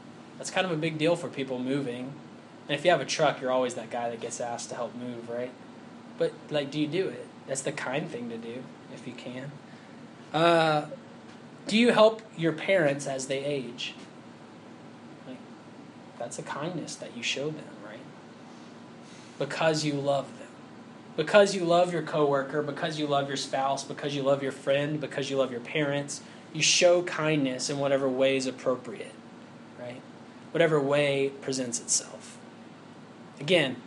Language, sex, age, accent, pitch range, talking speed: English, male, 10-29, American, 135-175 Hz, 170 wpm